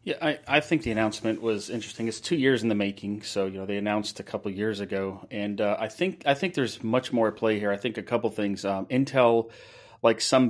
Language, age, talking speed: English, 40-59, 265 wpm